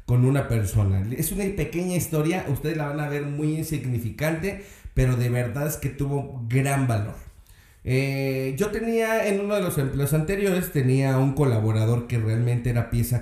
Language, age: Spanish, 40-59